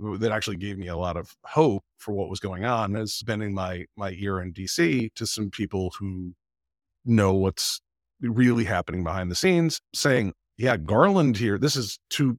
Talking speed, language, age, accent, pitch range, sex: 185 wpm, English, 50-69, American, 95-125 Hz, male